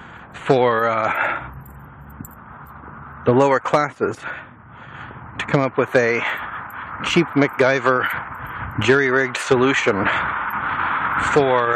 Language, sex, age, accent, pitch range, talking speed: English, male, 40-59, American, 100-135 Hz, 75 wpm